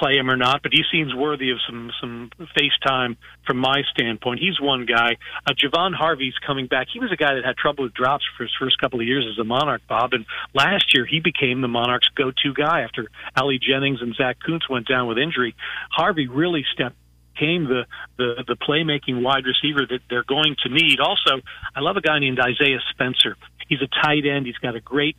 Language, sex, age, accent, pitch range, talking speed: English, male, 40-59, American, 125-145 Hz, 220 wpm